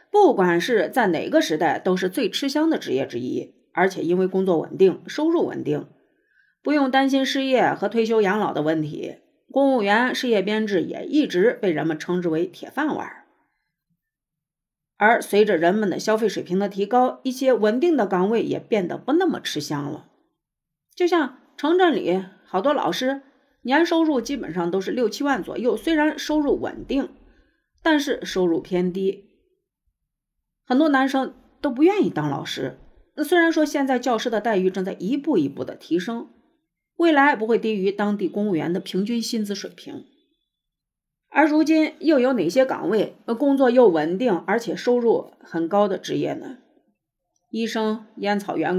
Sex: female